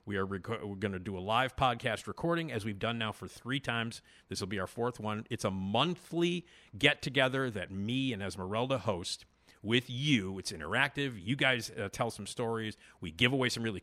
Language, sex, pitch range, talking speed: English, male, 105-140 Hz, 210 wpm